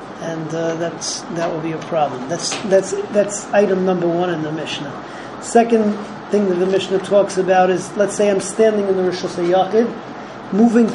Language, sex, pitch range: English, male, 180-210 Hz